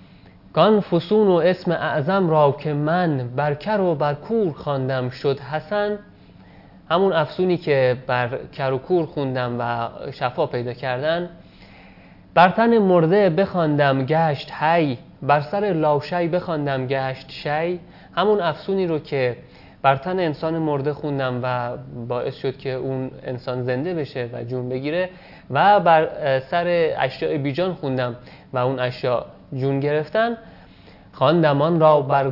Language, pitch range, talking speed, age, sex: Persian, 130-170 Hz, 130 wpm, 30-49, male